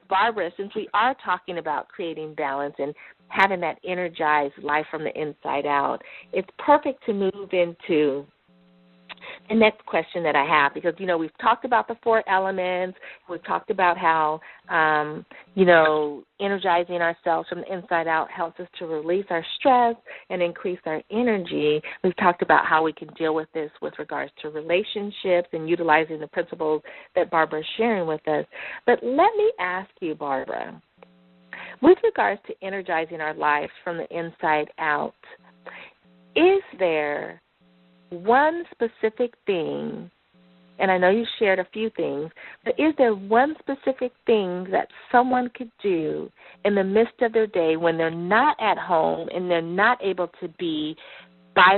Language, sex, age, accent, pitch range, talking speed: English, female, 40-59, American, 155-215 Hz, 160 wpm